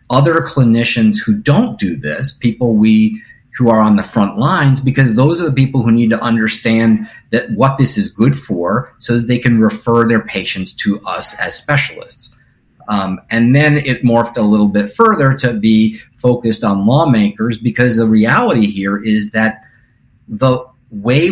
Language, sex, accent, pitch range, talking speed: English, male, American, 110-135 Hz, 175 wpm